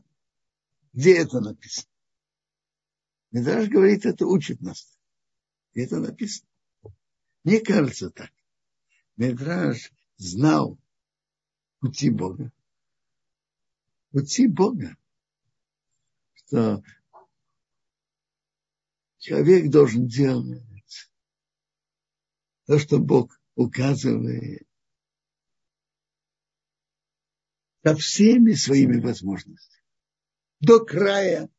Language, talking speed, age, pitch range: Russian, 65 wpm, 60-79, 125-185 Hz